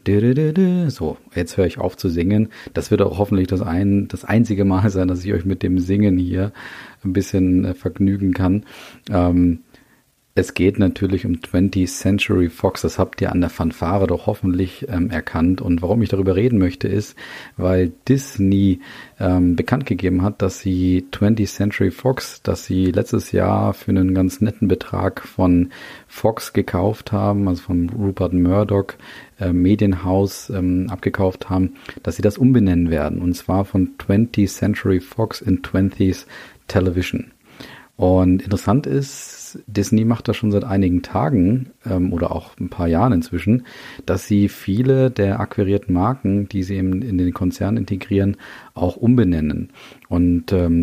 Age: 40-59